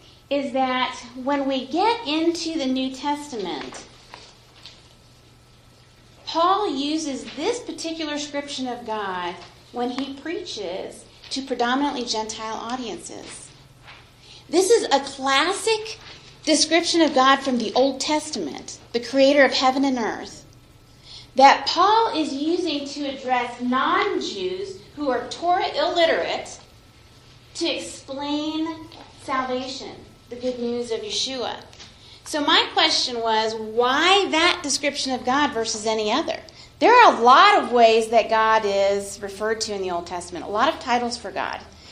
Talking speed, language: 130 wpm, English